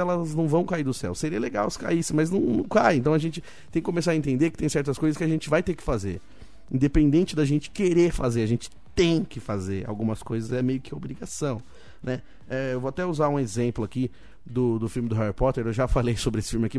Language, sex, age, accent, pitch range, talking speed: Portuguese, male, 20-39, Brazilian, 120-165 Hz, 255 wpm